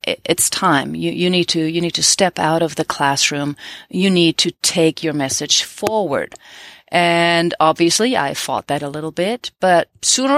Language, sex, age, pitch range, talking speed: English, female, 30-49, 160-185 Hz, 180 wpm